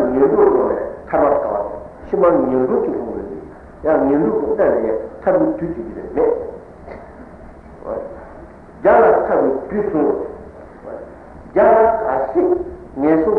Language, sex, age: Italian, male, 60-79